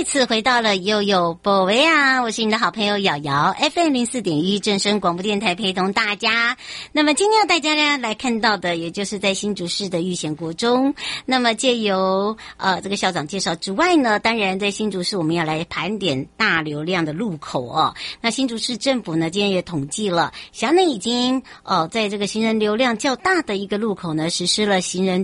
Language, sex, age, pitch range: Chinese, male, 60-79, 175-225 Hz